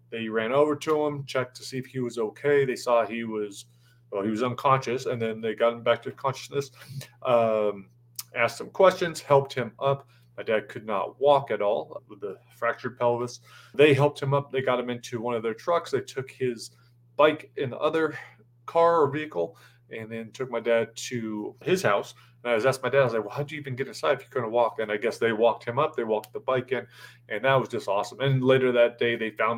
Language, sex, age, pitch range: English, male, 30-49, 115-140 Hz